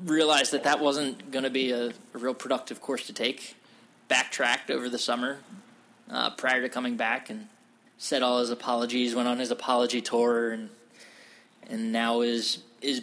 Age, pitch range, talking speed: 20-39, 120-135 Hz, 175 wpm